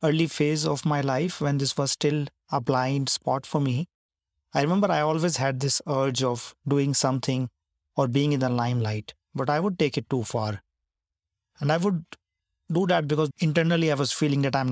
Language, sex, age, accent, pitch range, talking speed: English, male, 40-59, Indian, 120-155 Hz, 195 wpm